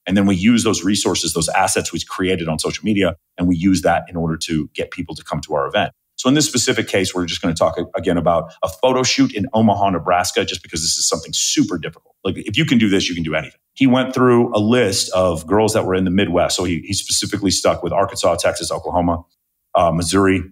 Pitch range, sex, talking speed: 85-105 Hz, male, 245 wpm